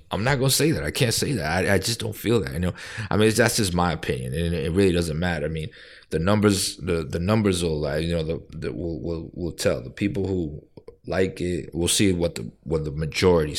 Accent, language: American, English